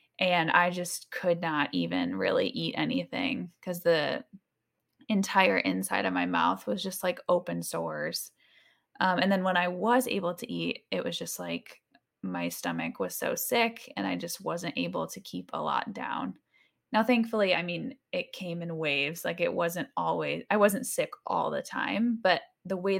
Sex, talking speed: female, 185 wpm